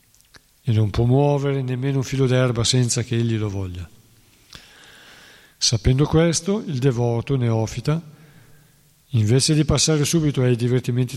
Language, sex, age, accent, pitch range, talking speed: Italian, male, 50-69, native, 115-140 Hz, 130 wpm